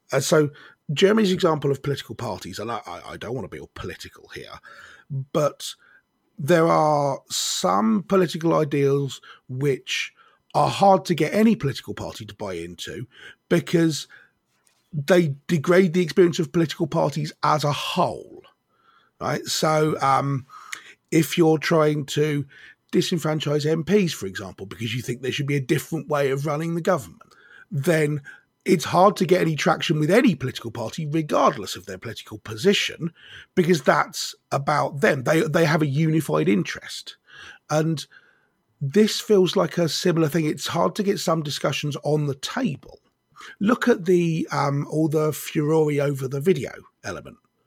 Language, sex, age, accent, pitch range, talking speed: English, male, 30-49, British, 140-180 Hz, 150 wpm